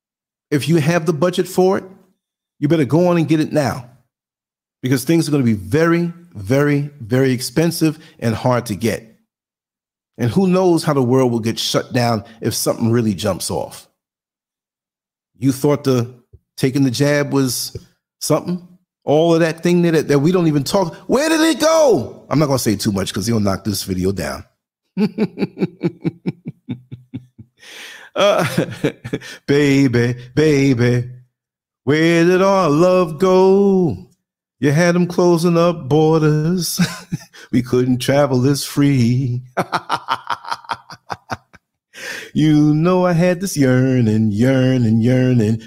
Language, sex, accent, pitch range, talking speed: English, male, American, 125-175 Hz, 140 wpm